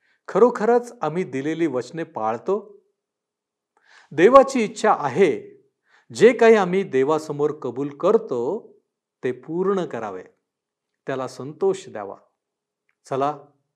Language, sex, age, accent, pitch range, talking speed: Marathi, male, 50-69, native, 135-190 Hz, 90 wpm